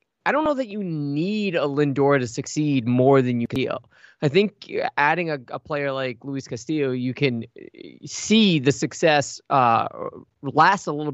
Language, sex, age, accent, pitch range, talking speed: English, male, 20-39, American, 125-160 Hz, 170 wpm